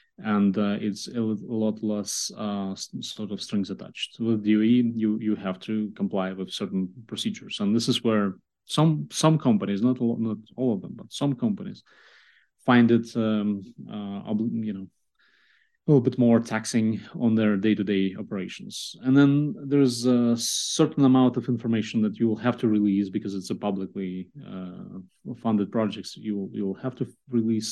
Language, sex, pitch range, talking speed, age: English, male, 100-125 Hz, 175 wpm, 30-49